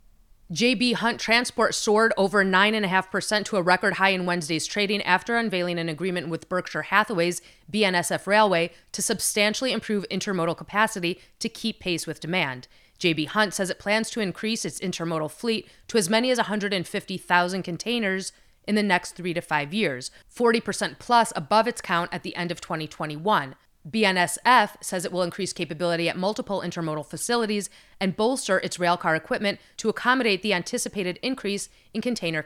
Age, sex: 30-49, female